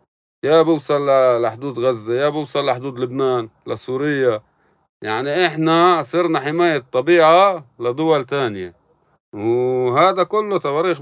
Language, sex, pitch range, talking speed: Arabic, male, 120-155 Hz, 105 wpm